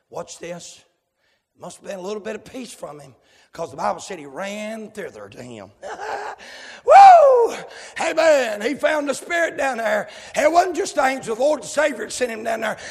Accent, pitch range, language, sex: American, 250-305 Hz, English, male